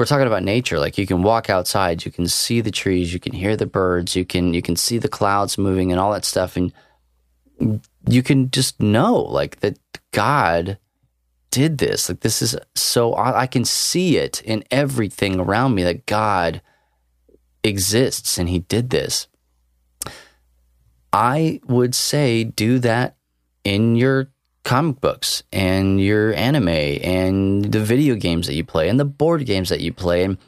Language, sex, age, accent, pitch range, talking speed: English, male, 20-39, American, 85-120 Hz, 170 wpm